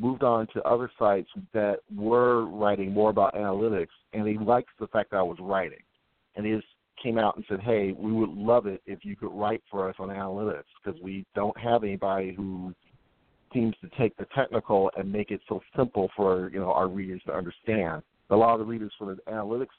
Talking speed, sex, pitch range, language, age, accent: 215 wpm, male, 95-110 Hz, English, 50-69, American